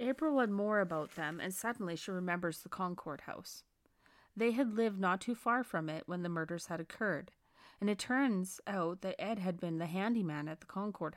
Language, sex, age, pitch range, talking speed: English, female, 30-49, 160-205 Hz, 205 wpm